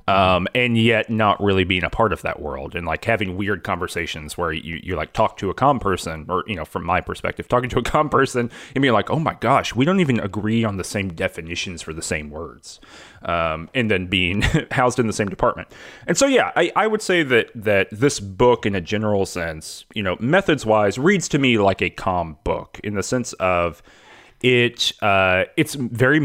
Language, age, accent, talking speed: English, 30-49, American, 220 wpm